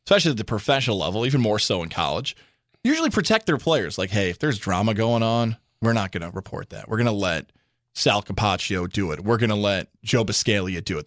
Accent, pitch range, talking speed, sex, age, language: American, 105-140 Hz, 235 wpm, male, 20-39, English